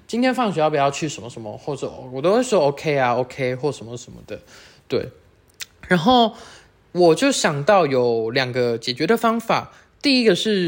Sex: male